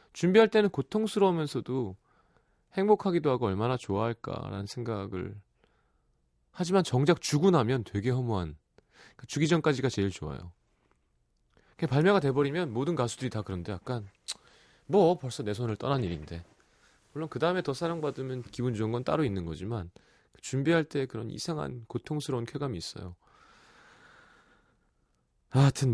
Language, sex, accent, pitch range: Korean, male, native, 95-140 Hz